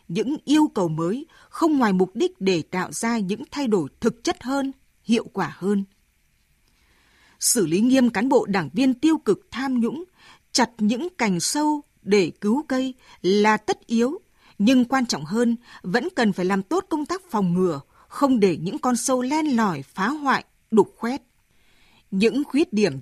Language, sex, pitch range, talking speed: Vietnamese, female, 195-270 Hz, 175 wpm